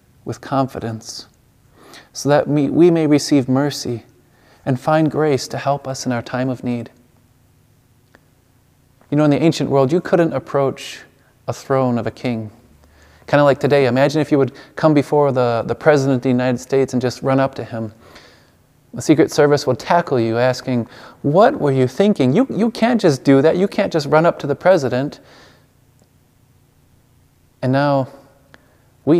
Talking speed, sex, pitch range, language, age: 175 wpm, male, 125-155 Hz, English, 30-49